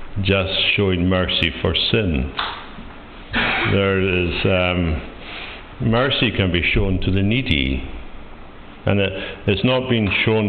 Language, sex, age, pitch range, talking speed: English, male, 60-79, 80-100 Hz, 120 wpm